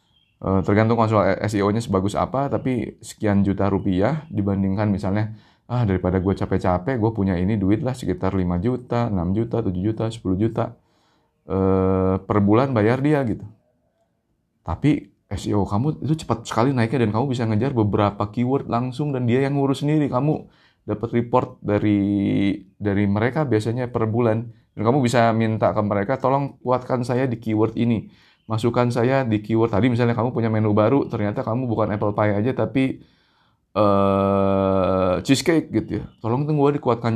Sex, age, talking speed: male, 20-39, 160 wpm